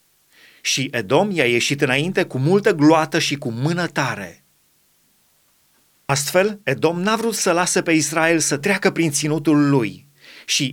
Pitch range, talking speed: 145-185 Hz, 145 wpm